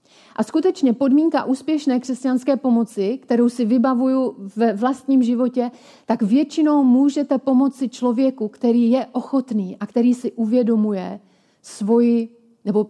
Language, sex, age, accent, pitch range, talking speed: Czech, female, 40-59, native, 215-255 Hz, 120 wpm